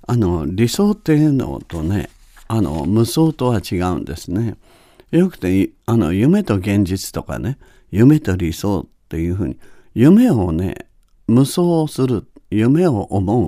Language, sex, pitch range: Japanese, male, 90-150 Hz